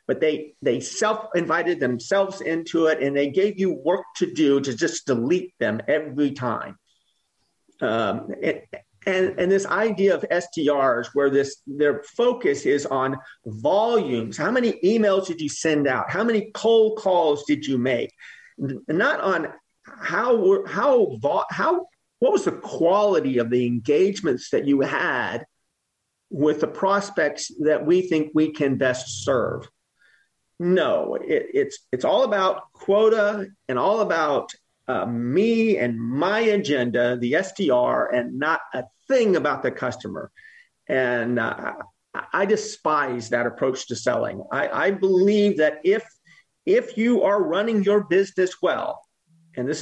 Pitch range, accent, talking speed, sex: 145-210 Hz, American, 145 wpm, male